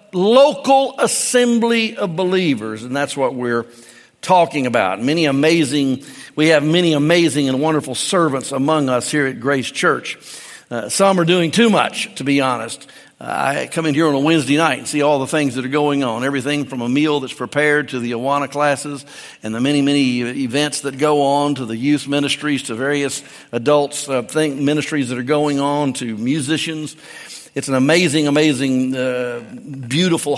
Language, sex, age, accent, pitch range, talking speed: English, male, 50-69, American, 140-185 Hz, 180 wpm